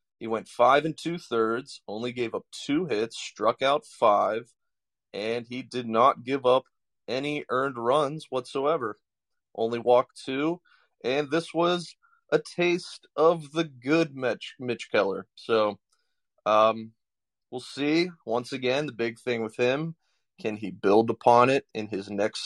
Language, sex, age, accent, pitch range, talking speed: English, male, 30-49, American, 110-140 Hz, 150 wpm